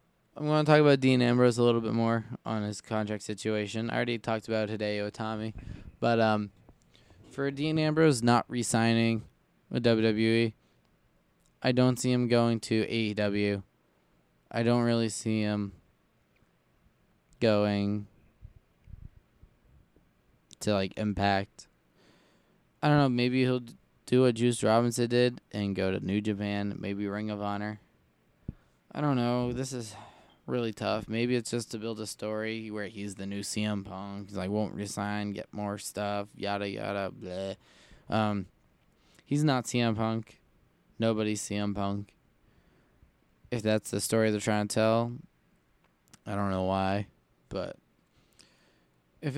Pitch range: 105-120 Hz